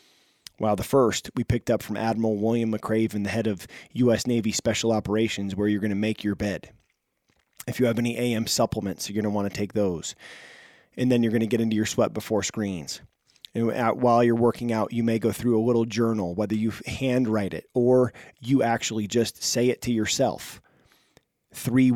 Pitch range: 105-125 Hz